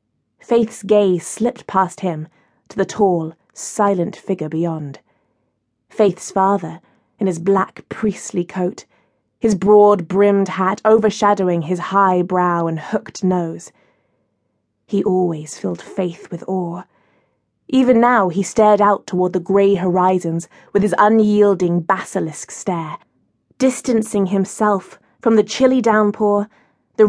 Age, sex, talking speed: 20-39, female, 125 wpm